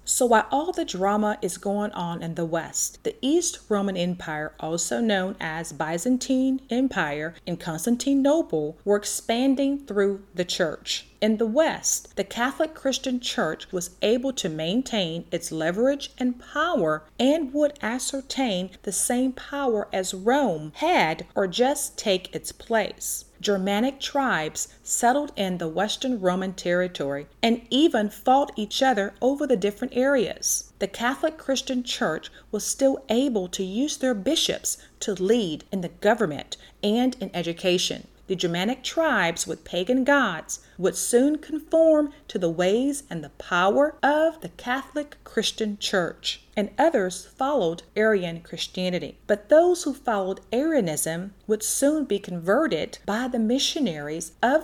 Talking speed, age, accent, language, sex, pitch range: 145 wpm, 40-59, American, English, female, 185-270 Hz